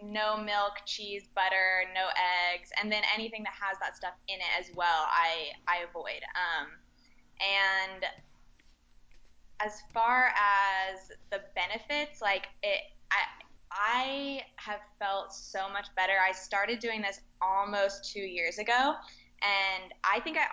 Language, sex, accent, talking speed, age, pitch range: English, female, American, 140 wpm, 20-39, 180-210 Hz